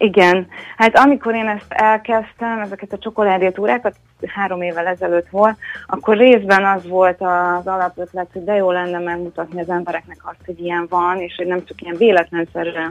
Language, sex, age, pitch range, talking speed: Hungarian, female, 30-49, 170-195 Hz, 165 wpm